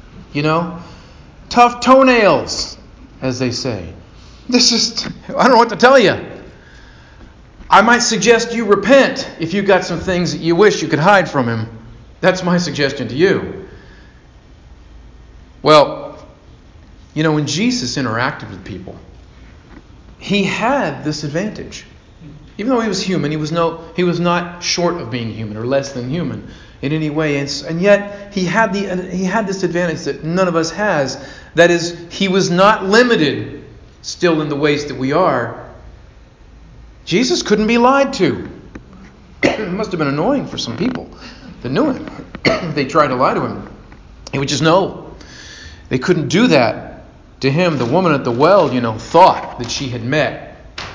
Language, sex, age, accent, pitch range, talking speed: English, male, 40-59, American, 130-200 Hz, 165 wpm